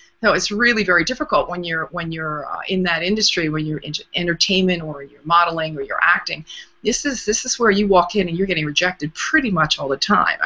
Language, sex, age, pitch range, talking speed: English, female, 40-59, 155-195 Hz, 230 wpm